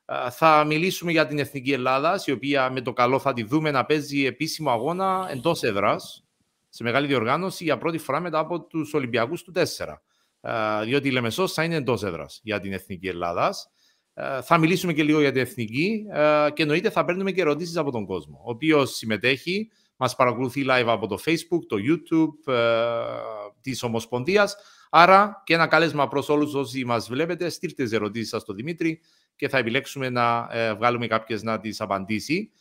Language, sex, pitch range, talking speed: Greek, male, 120-170 Hz, 175 wpm